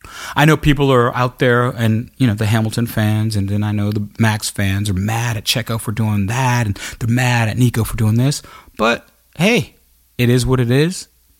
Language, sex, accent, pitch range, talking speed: English, male, American, 95-135 Hz, 215 wpm